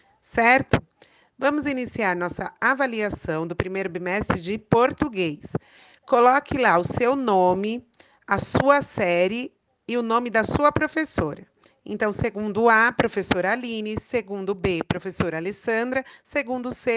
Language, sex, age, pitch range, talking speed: Portuguese, female, 40-59, 205-280 Hz, 125 wpm